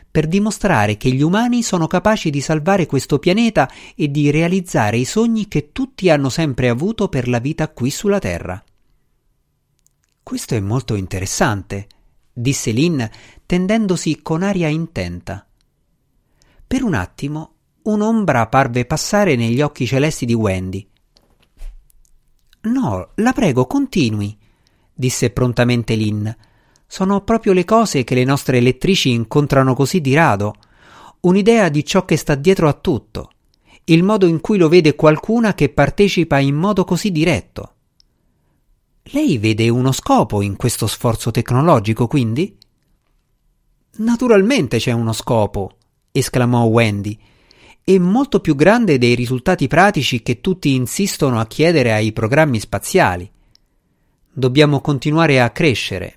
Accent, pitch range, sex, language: native, 115-180 Hz, male, Italian